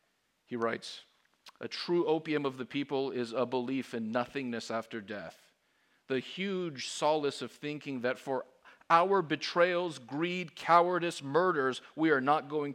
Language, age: English, 50-69